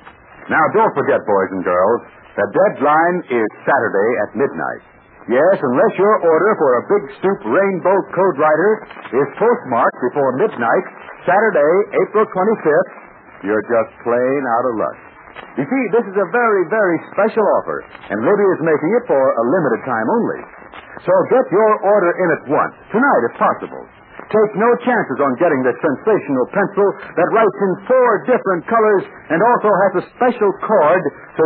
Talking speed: 165 wpm